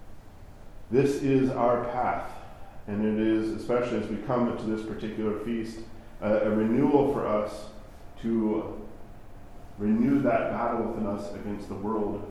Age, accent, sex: 40-59, American, male